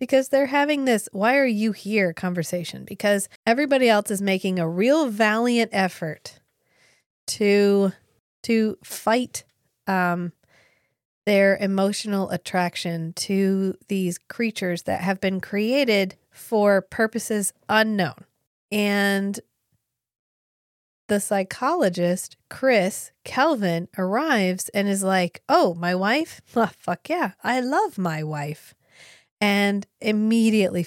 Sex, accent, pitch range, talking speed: female, American, 185-240 Hz, 110 wpm